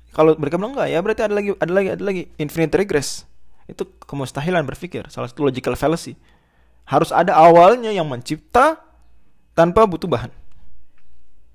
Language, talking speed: Indonesian, 150 wpm